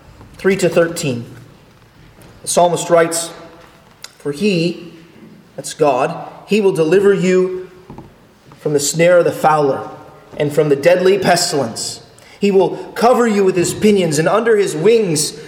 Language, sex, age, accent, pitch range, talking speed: English, male, 30-49, American, 155-195 Hz, 140 wpm